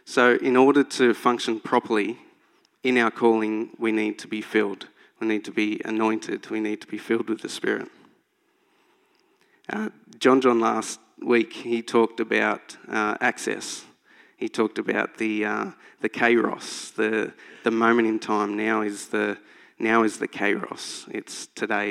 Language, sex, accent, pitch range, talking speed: English, male, Australian, 110-130 Hz, 160 wpm